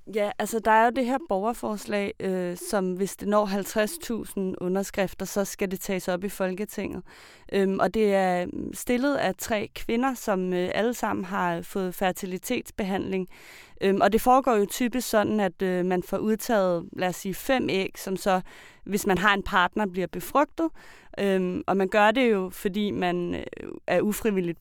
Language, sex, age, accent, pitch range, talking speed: Danish, female, 30-49, native, 185-220 Hz, 180 wpm